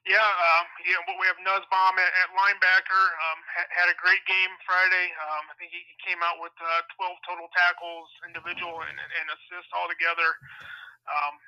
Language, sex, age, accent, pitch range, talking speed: English, male, 30-49, American, 160-185 Hz, 180 wpm